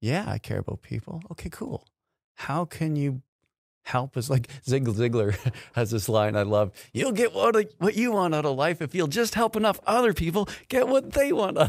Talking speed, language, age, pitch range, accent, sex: 200 wpm, English, 40-59, 110-145 Hz, American, male